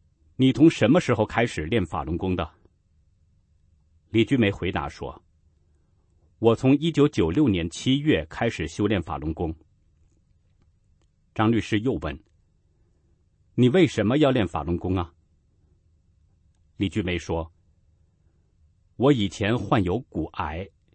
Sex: male